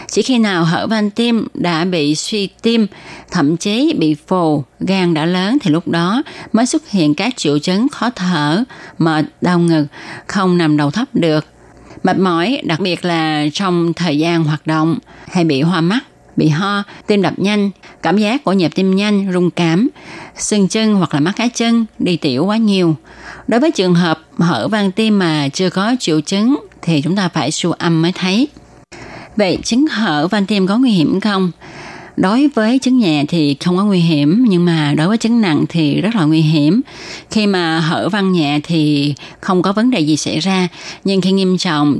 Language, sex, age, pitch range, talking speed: Vietnamese, female, 20-39, 160-210 Hz, 200 wpm